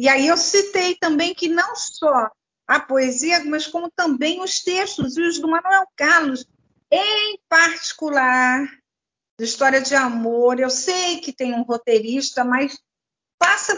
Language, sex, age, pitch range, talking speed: Portuguese, female, 50-69, 235-335 Hz, 150 wpm